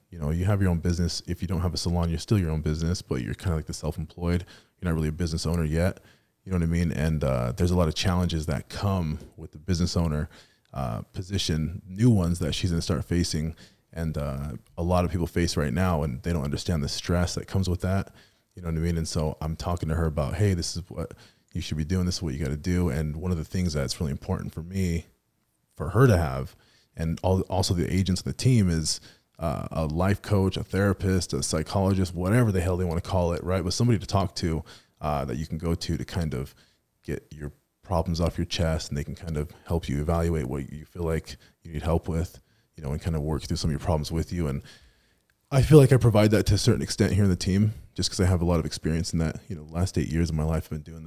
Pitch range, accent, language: 80-95 Hz, American, English